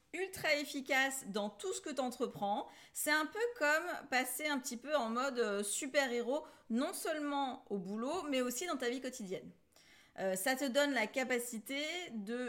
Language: French